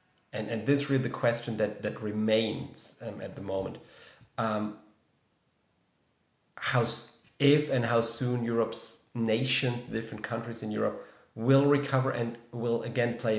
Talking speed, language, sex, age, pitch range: 150 wpm, English, male, 40-59, 110-130 Hz